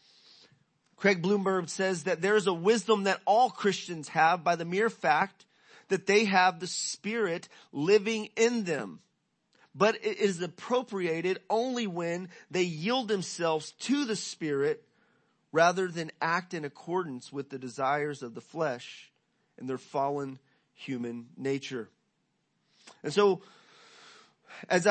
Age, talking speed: 30-49, 135 wpm